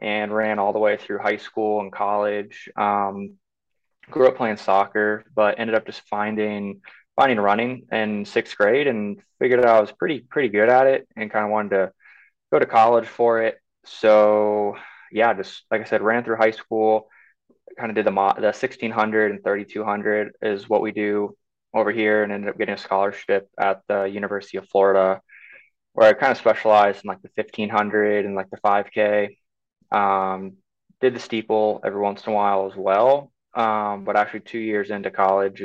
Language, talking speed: English, 190 wpm